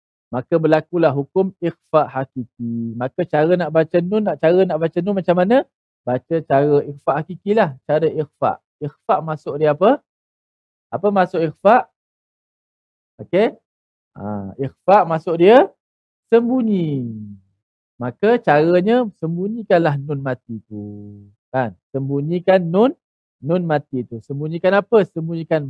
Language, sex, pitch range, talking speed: Malayalam, male, 135-185 Hz, 120 wpm